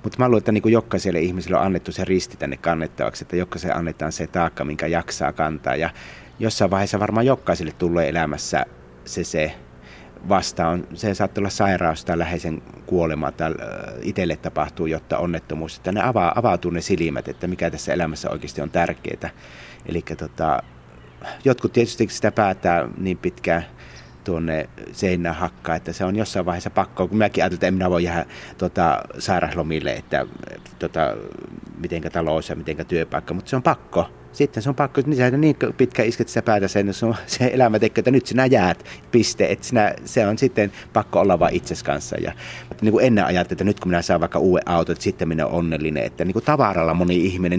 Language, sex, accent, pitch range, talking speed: Finnish, male, native, 80-105 Hz, 190 wpm